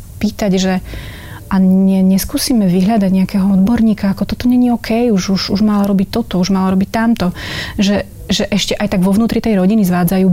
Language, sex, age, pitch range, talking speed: Slovak, female, 30-49, 180-200 Hz, 185 wpm